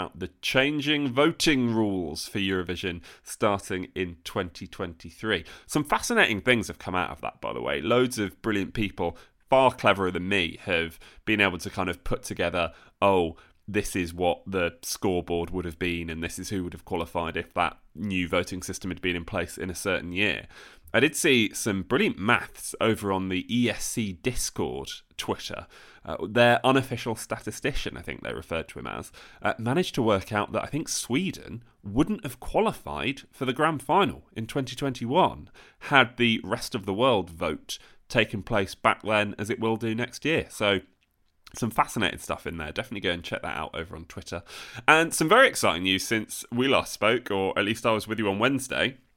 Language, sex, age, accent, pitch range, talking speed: English, male, 20-39, British, 90-120 Hz, 190 wpm